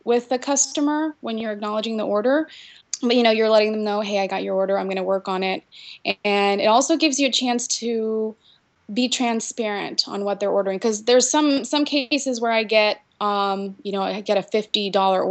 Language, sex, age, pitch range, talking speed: English, female, 20-39, 195-225 Hz, 215 wpm